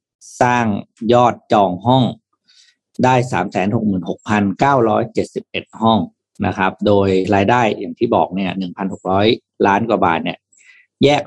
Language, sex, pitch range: Thai, male, 100-120 Hz